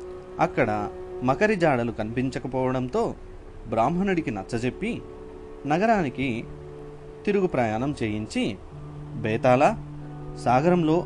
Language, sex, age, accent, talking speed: Telugu, male, 30-49, native, 65 wpm